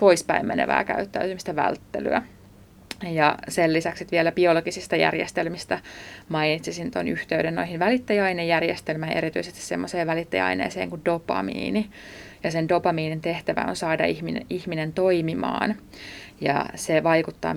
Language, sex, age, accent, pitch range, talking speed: Finnish, female, 20-39, native, 150-180 Hz, 110 wpm